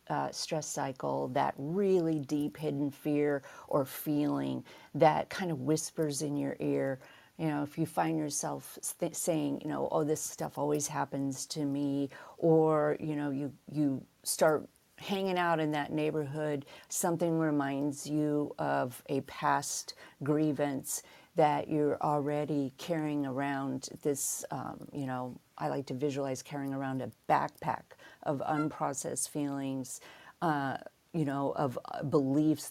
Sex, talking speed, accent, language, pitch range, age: female, 140 wpm, American, English, 140-160 Hz, 50-69